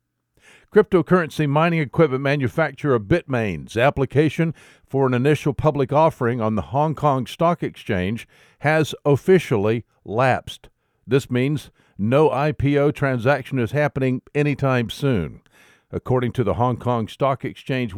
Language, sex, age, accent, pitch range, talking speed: English, male, 60-79, American, 115-150 Hz, 120 wpm